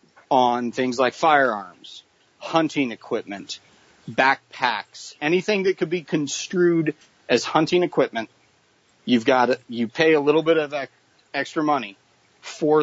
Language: English